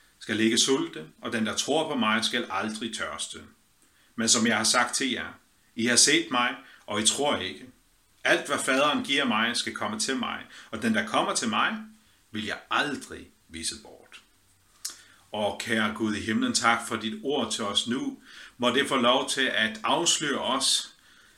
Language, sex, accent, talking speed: Danish, male, native, 190 wpm